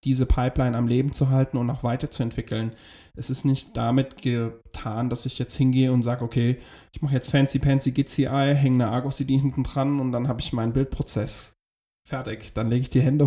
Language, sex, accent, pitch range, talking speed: German, male, German, 125-140 Hz, 205 wpm